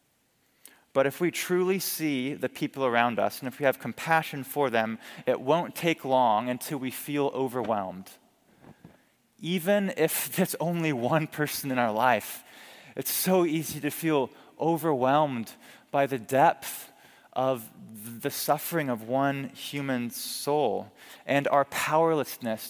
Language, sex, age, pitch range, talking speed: English, male, 20-39, 120-150 Hz, 135 wpm